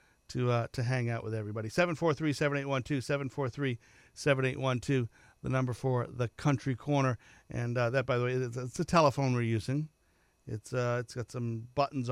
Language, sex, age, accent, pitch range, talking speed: English, male, 50-69, American, 120-150 Hz, 165 wpm